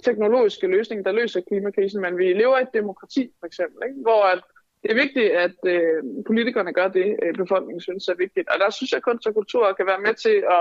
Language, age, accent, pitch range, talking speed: Danish, 20-39, native, 185-250 Hz, 225 wpm